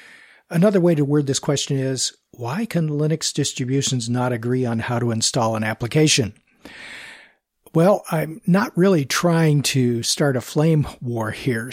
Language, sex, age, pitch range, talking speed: English, male, 50-69, 125-165 Hz, 155 wpm